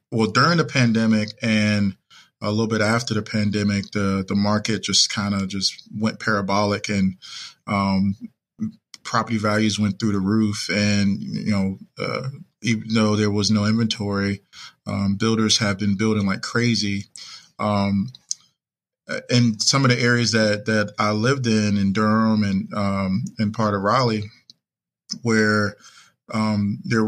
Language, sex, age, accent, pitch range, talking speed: English, male, 20-39, American, 105-115 Hz, 150 wpm